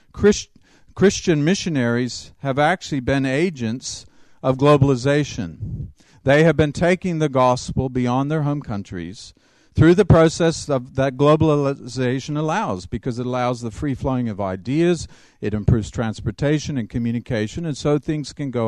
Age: 50-69